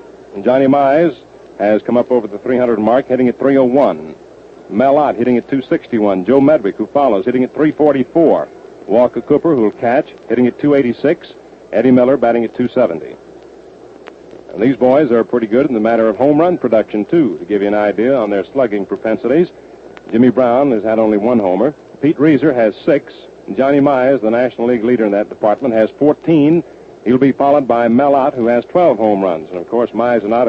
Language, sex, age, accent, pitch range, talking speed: English, male, 60-79, American, 115-140 Hz, 195 wpm